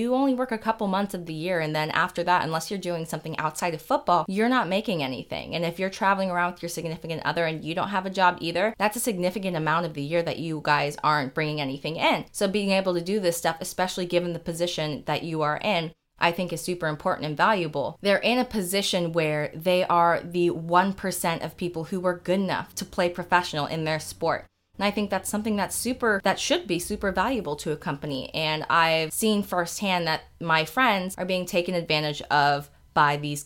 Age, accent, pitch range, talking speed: 20-39, American, 155-190 Hz, 225 wpm